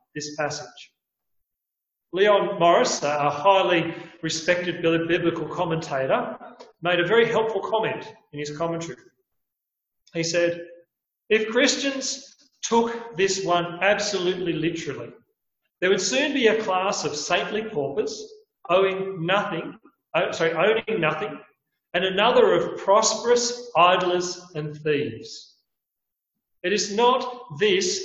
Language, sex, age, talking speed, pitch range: English, male, 40-59, 110 wpm, 165-220 Hz